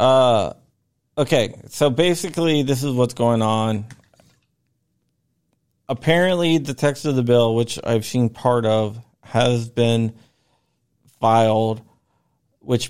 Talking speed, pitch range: 110 wpm, 110-125 Hz